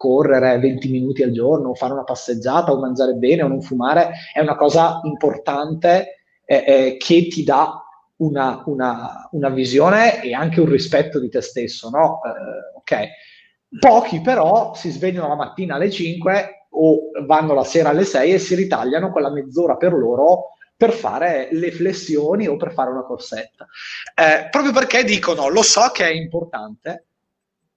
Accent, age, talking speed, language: native, 30-49, 160 wpm, Italian